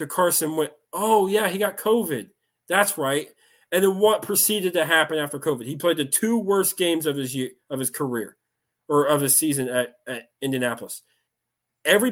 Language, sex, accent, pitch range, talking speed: English, male, American, 130-175 Hz, 185 wpm